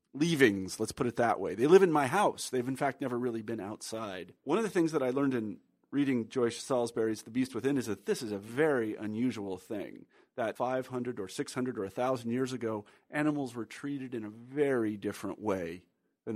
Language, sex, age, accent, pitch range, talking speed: English, male, 40-59, American, 110-140 Hz, 210 wpm